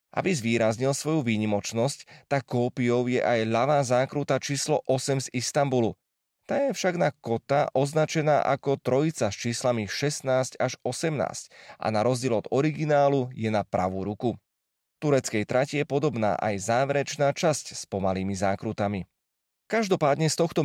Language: Slovak